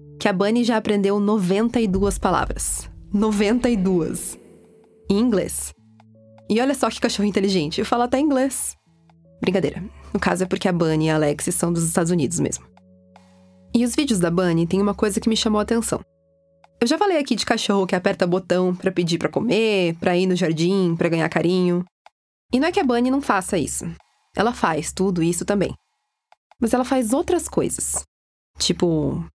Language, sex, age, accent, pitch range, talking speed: Portuguese, female, 20-39, Brazilian, 165-215 Hz, 180 wpm